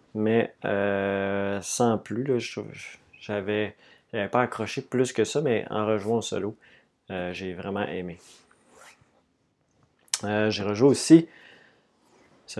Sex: male